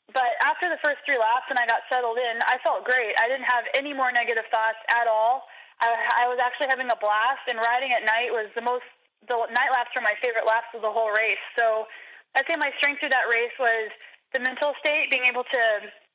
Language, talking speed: English, 240 wpm